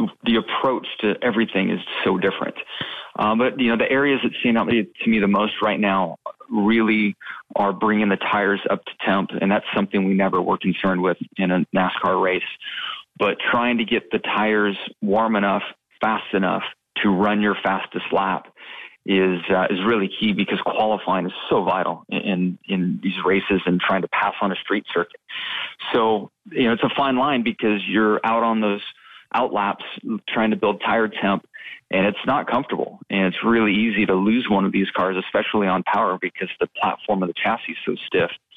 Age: 30-49